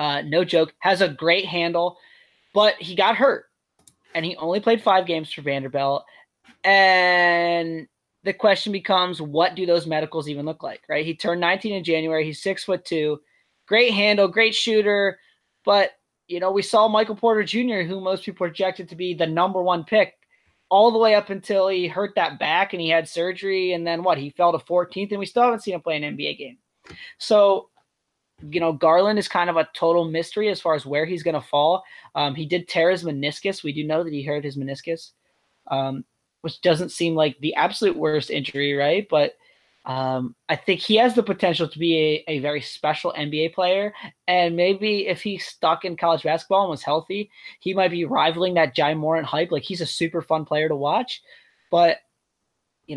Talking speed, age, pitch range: 205 wpm, 20-39, 155-195 Hz